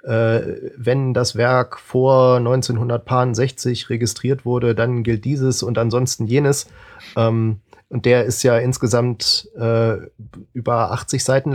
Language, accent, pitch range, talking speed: German, German, 120-135 Hz, 125 wpm